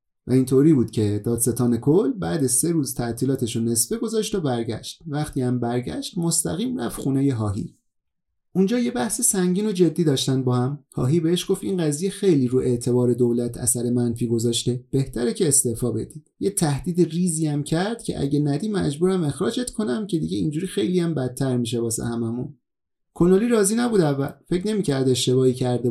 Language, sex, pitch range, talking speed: Persian, male, 125-180 Hz, 175 wpm